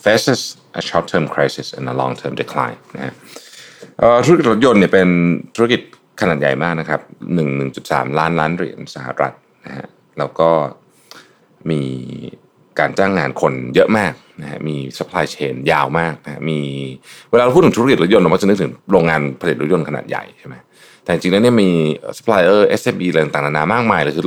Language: Thai